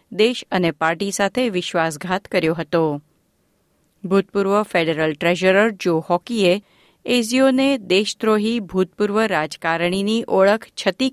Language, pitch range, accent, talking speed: Gujarati, 170-220 Hz, native, 85 wpm